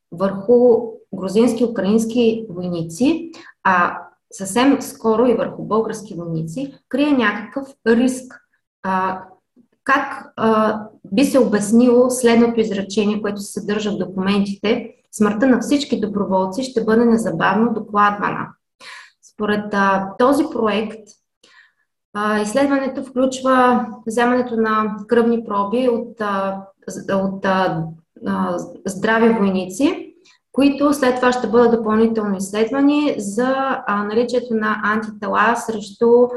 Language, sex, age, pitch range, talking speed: Bulgarian, female, 20-39, 200-245 Hz, 105 wpm